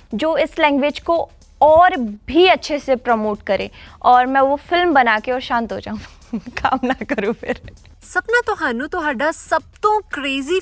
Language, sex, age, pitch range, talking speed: Punjabi, female, 20-39, 235-285 Hz, 170 wpm